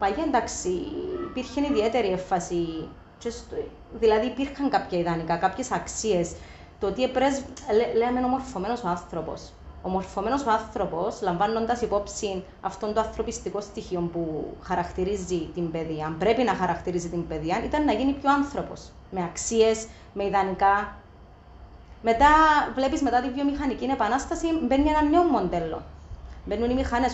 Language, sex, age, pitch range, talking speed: Greek, female, 30-49, 195-270 Hz, 135 wpm